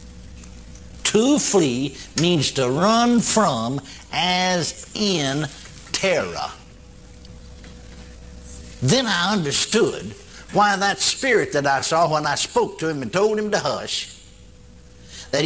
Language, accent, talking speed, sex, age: English, American, 115 wpm, male, 60-79